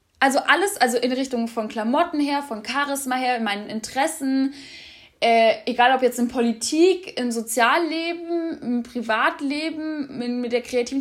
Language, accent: German, German